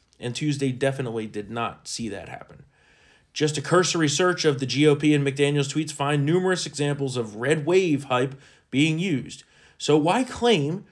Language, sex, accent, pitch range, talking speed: English, male, American, 135-165 Hz, 165 wpm